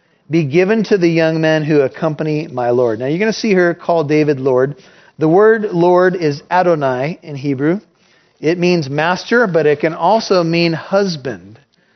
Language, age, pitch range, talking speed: English, 40-59, 155-195 Hz, 175 wpm